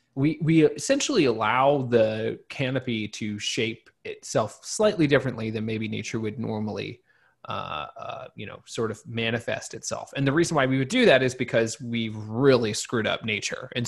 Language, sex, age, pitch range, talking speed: English, male, 20-39, 110-140 Hz, 175 wpm